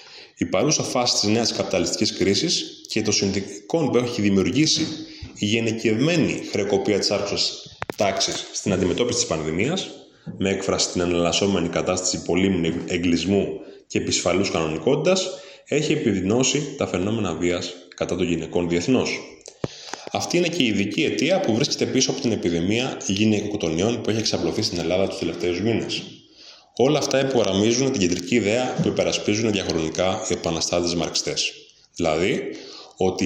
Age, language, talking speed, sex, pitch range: 20-39, Greek, 140 wpm, male, 90-125 Hz